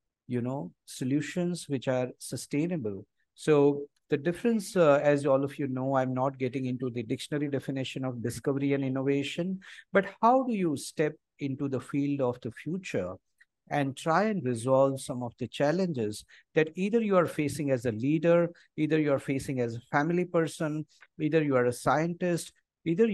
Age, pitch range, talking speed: 50-69, 125-160 Hz, 175 wpm